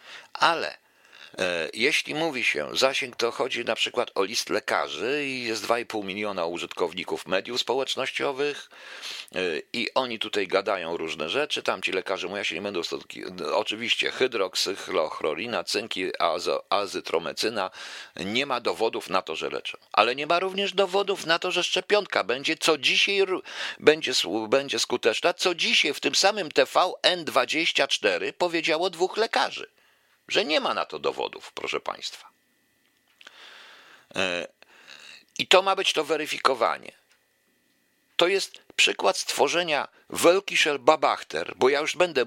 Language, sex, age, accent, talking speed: Polish, male, 50-69, native, 140 wpm